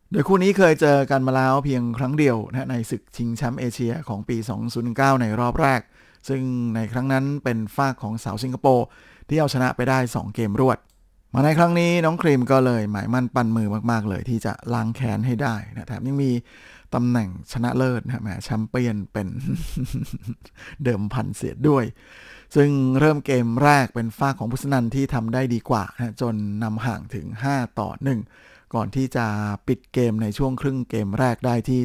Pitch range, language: 115-135 Hz, Thai